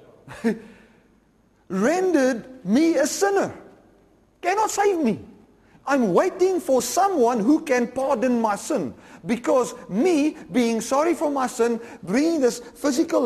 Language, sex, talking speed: English, male, 120 wpm